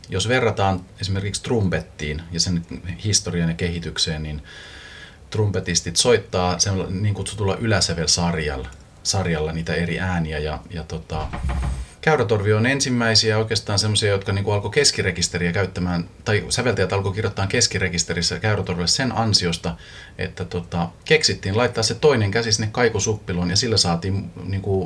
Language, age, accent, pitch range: Finnish, 30-49, native, 85-105 Hz